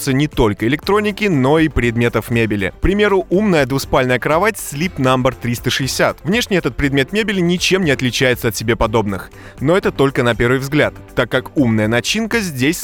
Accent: native